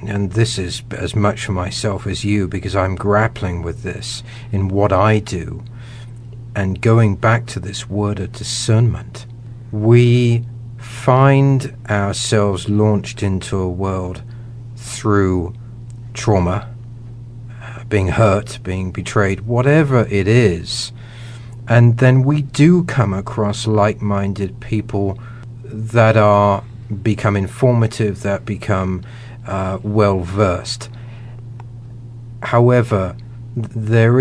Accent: British